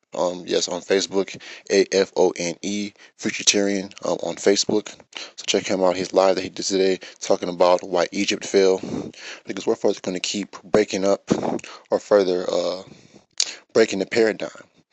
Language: English